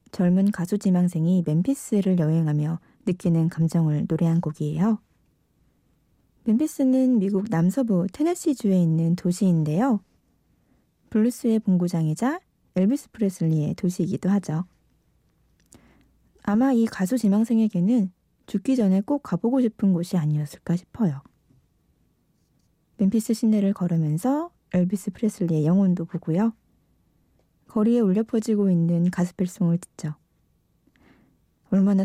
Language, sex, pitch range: Korean, female, 175-230 Hz